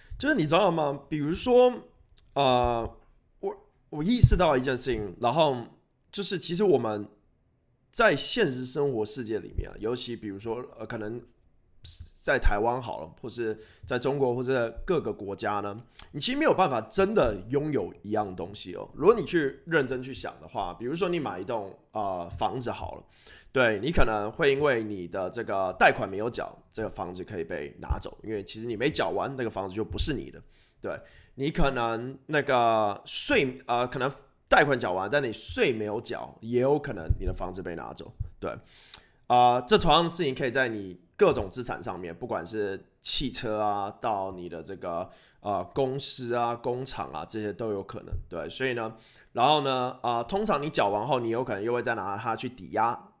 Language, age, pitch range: English, 20-39, 105-135 Hz